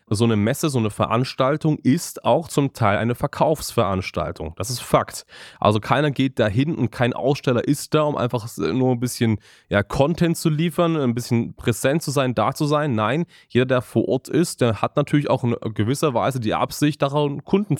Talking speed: 195 wpm